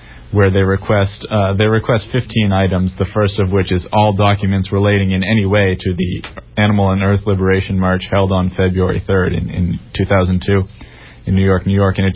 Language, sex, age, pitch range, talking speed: English, male, 30-49, 90-105 Hz, 195 wpm